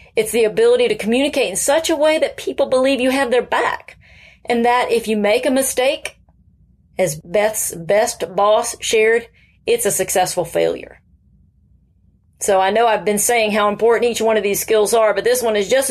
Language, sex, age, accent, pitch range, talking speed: English, female, 40-59, American, 185-275 Hz, 190 wpm